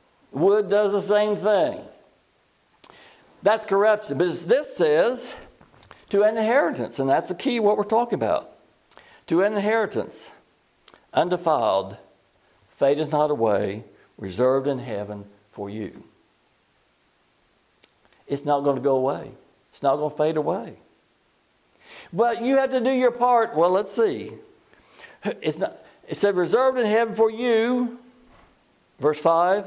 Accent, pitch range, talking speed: American, 130-195 Hz, 135 wpm